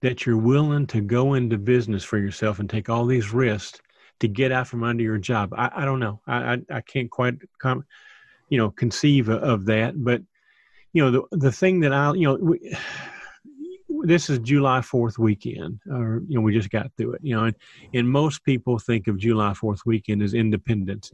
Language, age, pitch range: English, 40-59, 110-140 Hz